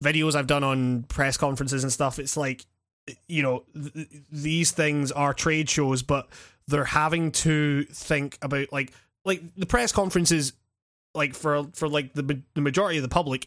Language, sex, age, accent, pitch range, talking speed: English, male, 20-39, British, 130-155 Hz, 180 wpm